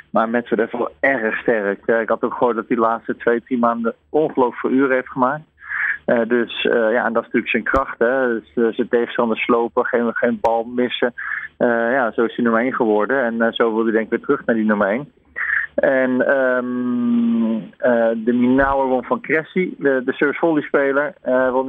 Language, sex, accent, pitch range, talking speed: Dutch, male, Dutch, 120-135 Hz, 210 wpm